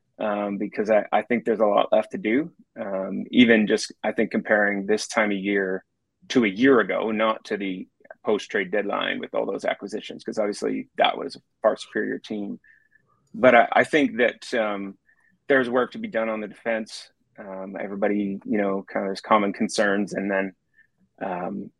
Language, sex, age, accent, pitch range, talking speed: English, male, 30-49, American, 100-115 Hz, 180 wpm